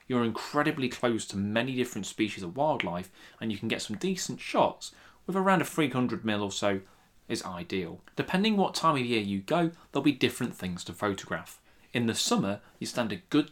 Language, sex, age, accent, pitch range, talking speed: English, male, 20-39, British, 100-145 Hz, 205 wpm